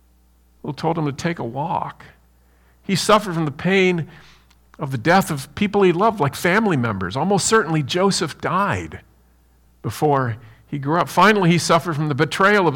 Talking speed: 175 wpm